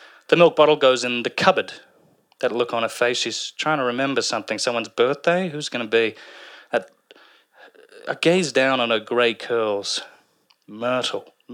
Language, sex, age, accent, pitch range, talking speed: English, male, 30-49, British, 115-155 Hz, 155 wpm